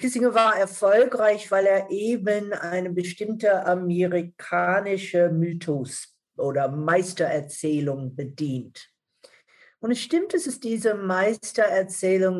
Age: 50-69